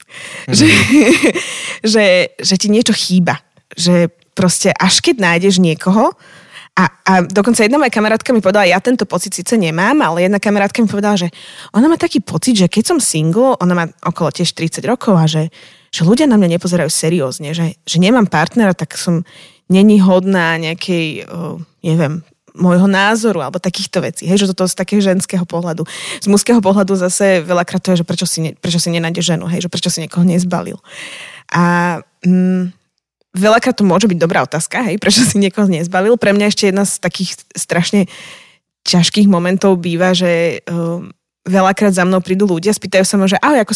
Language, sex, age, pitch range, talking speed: Slovak, female, 20-39, 175-205 Hz, 180 wpm